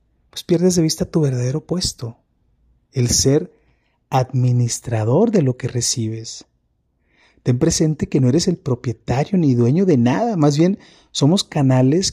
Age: 30-49